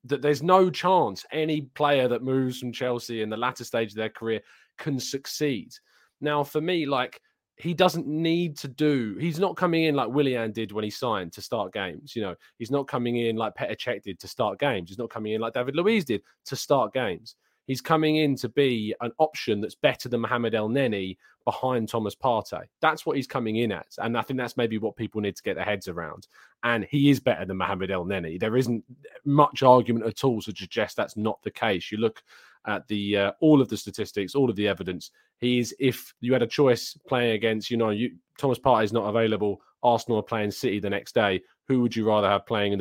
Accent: British